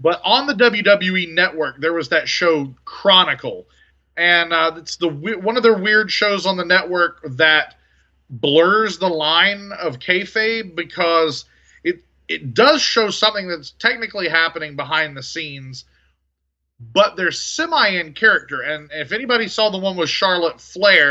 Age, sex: 30-49, male